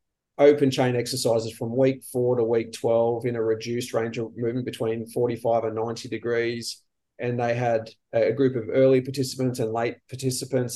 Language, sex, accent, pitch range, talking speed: English, male, Australian, 115-130 Hz, 175 wpm